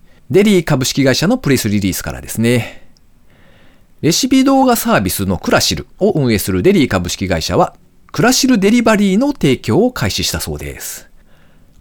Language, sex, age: Japanese, male, 40-59